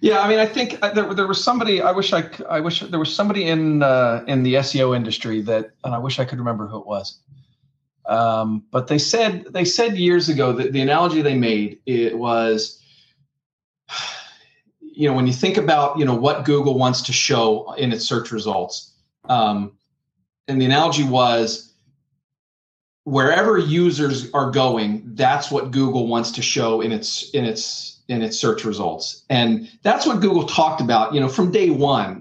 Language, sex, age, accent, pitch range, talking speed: English, male, 40-59, American, 115-150 Hz, 185 wpm